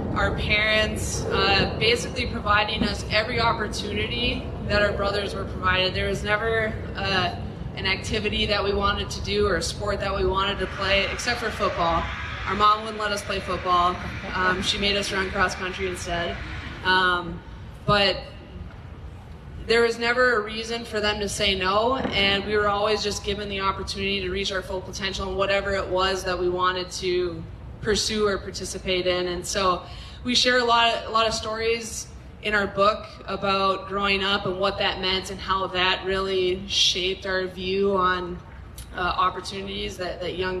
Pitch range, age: 185-205 Hz, 20-39